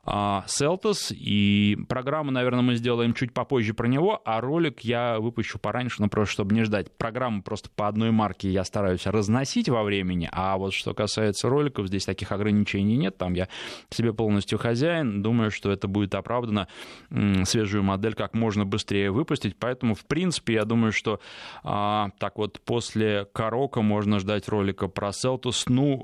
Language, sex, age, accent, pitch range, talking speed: Russian, male, 20-39, native, 105-135 Hz, 165 wpm